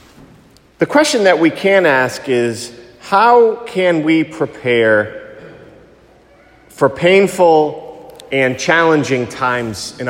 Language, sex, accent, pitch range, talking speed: English, male, American, 125-160 Hz, 100 wpm